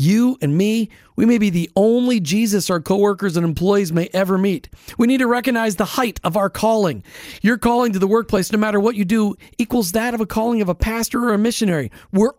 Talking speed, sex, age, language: 230 wpm, male, 40-59, English